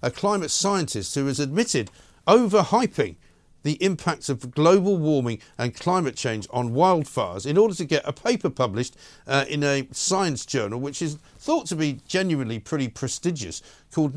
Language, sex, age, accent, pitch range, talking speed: English, male, 50-69, British, 120-165 Hz, 160 wpm